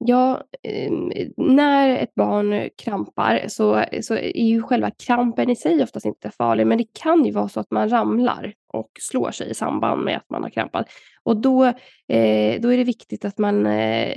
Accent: native